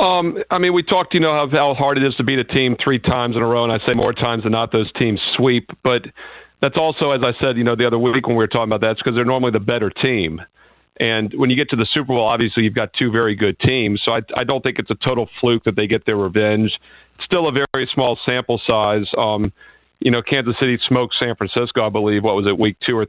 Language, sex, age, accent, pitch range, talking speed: English, male, 50-69, American, 110-125 Hz, 280 wpm